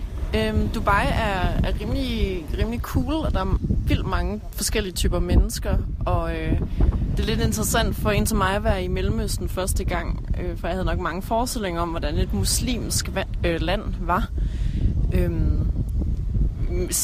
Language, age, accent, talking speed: Danish, 20-39, native, 160 wpm